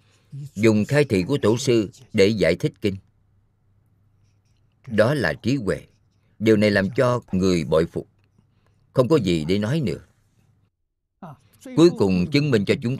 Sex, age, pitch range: male, 50-69, 100-110 Hz